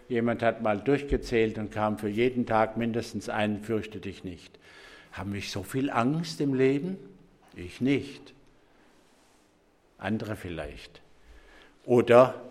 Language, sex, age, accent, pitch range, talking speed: English, male, 60-79, German, 110-140 Hz, 125 wpm